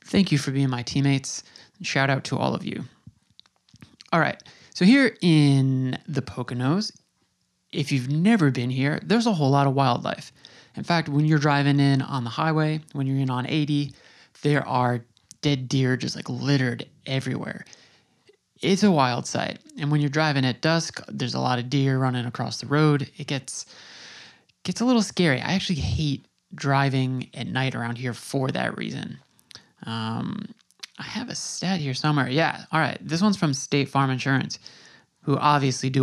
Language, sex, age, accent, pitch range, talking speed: English, male, 20-39, American, 130-160 Hz, 180 wpm